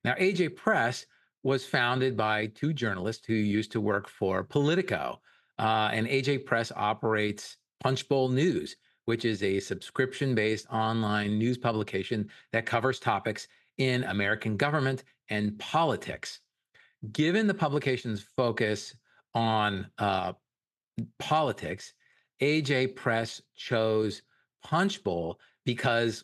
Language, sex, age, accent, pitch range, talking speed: English, male, 40-59, American, 105-135 Hz, 110 wpm